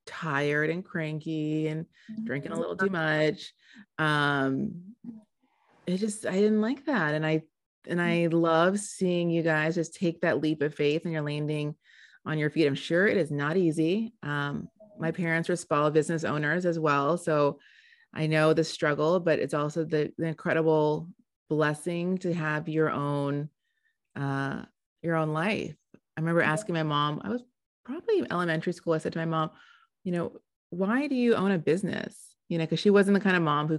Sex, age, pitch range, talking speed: female, 30-49, 155-190 Hz, 185 wpm